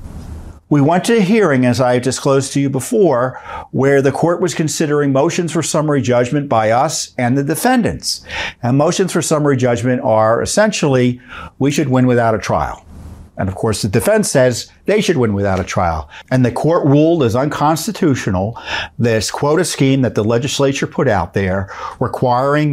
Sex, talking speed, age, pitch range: male, 175 wpm, 50-69, 110-145 Hz